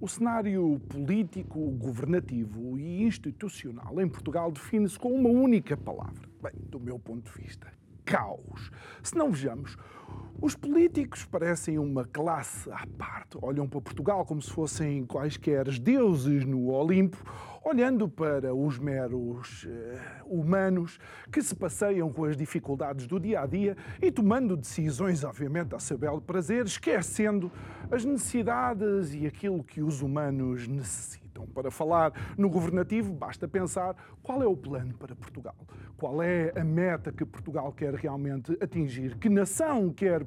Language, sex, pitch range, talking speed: Portuguese, male, 130-185 Hz, 145 wpm